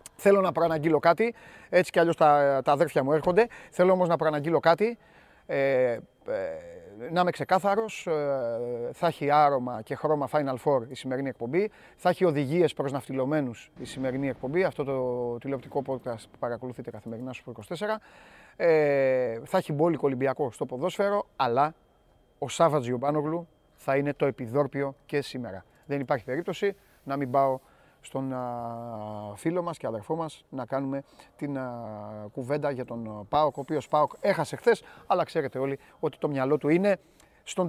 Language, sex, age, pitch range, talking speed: Greek, male, 30-49, 135-175 Hz, 160 wpm